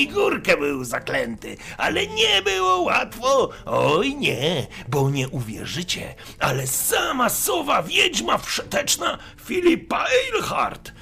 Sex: male